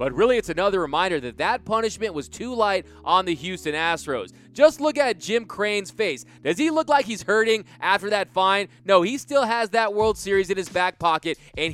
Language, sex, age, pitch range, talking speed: English, male, 20-39, 185-235 Hz, 215 wpm